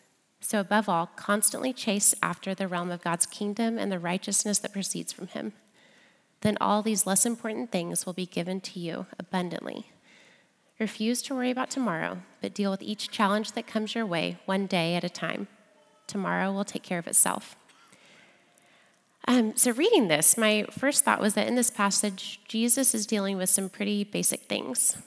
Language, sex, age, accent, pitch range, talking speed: English, female, 20-39, American, 190-225 Hz, 180 wpm